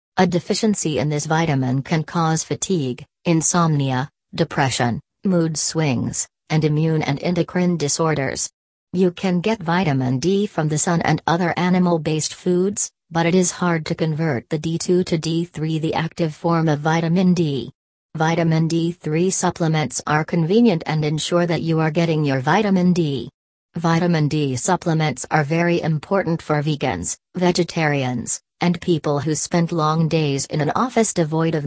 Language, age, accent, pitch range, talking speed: English, 40-59, American, 150-175 Hz, 150 wpm